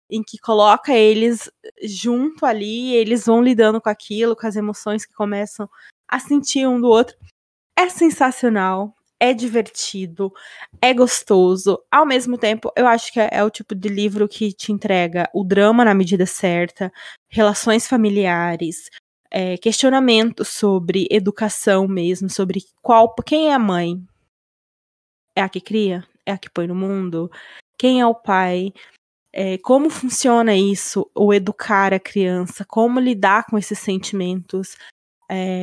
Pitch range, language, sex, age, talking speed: 195-240 Hz, Portuguese, female, 20-39, 145 wpm